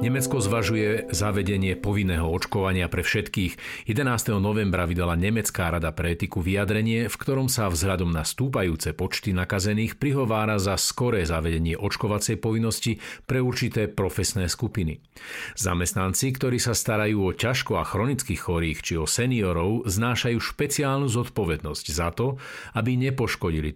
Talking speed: 130 wpm